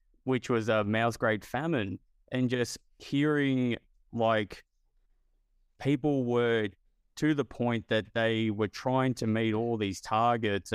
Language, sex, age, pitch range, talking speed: English, male, 20-39, 100-120 Hz, 135 wpm